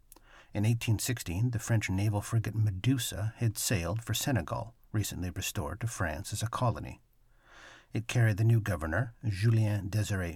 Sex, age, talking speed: male, 60-79, 140 wpm